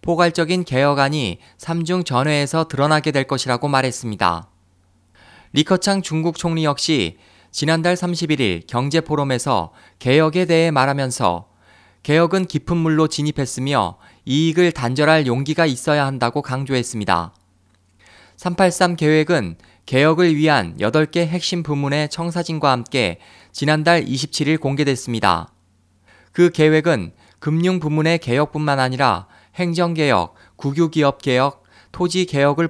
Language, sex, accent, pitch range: Korean, male, native, 110-160 Hz